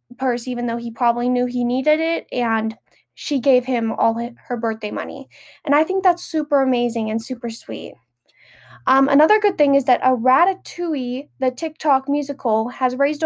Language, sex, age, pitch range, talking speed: English, female, 10-29, 235-290 Hz, 175 wpm